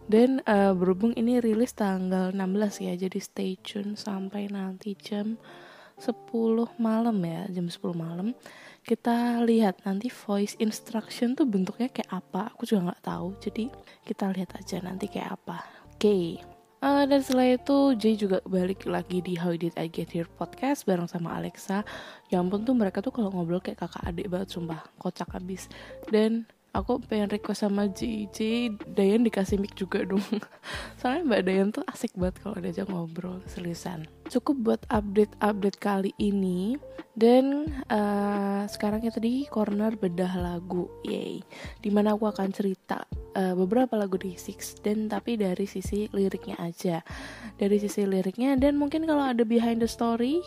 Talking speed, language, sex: 160 wpm, Indonesian, female